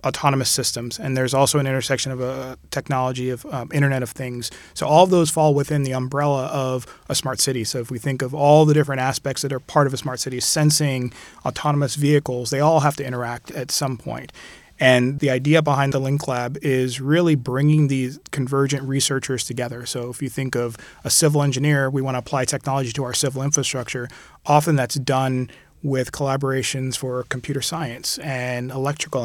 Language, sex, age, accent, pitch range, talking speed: English, male, 30-49, American, 130-145 Hz, 195 wpm